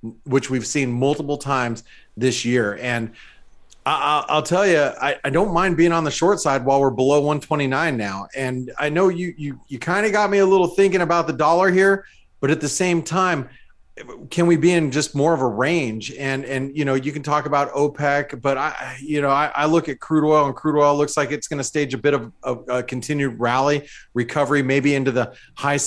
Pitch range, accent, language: 135-170 Hz, American, English